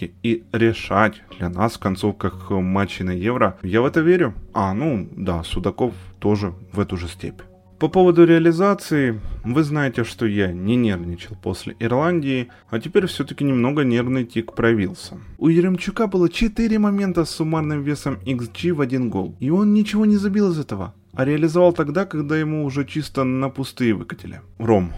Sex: male